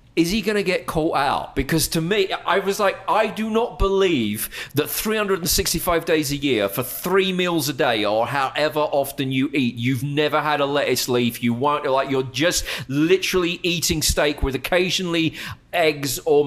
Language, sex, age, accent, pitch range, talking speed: English, male, 40-59, British, 150-185 Hz, 180 wpm